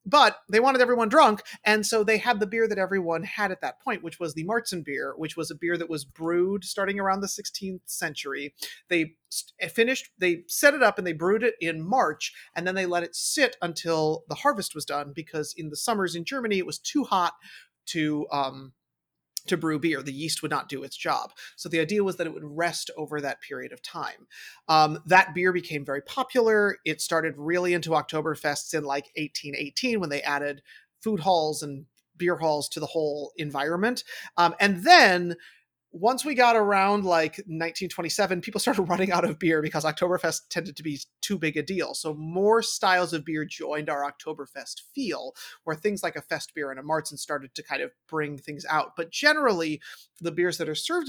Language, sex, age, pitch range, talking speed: English, male, 30-49, 155-200 Hz, 205 wpm